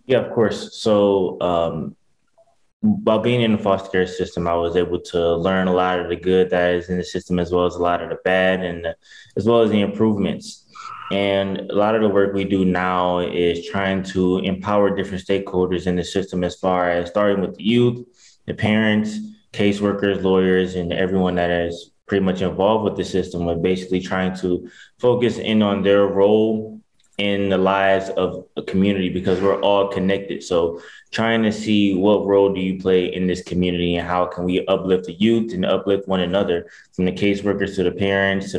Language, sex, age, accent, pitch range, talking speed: English, male, 20-39, American, 90-100 Hz, 200 wpm